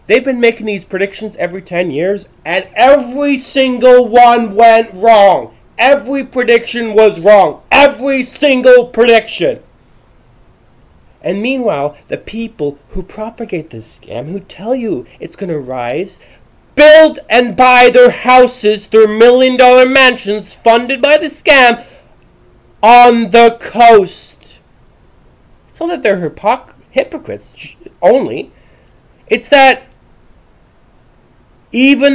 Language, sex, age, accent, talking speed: English, male, 30-49, American, 110 wpm